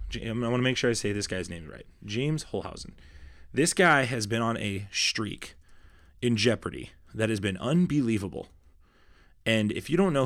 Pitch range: 95-120 Hz